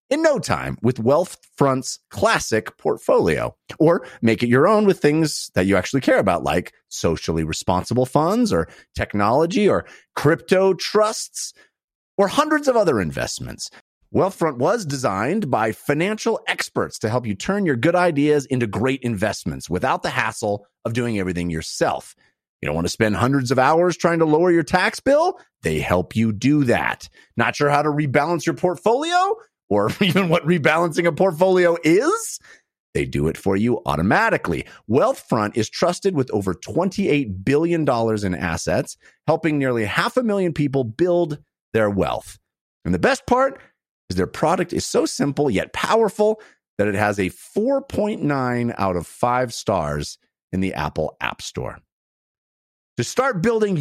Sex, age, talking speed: male, 30-49, 160 wpm